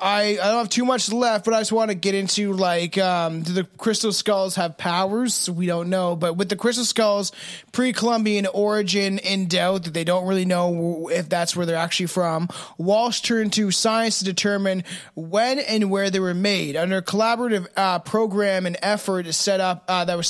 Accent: American